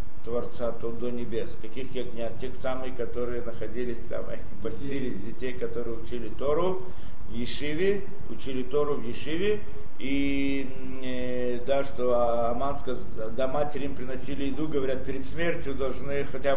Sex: male